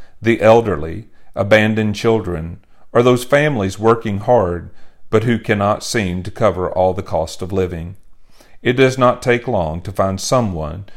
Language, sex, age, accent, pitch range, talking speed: English, male, 40-59, American, 85-110 Hz, 155 wpm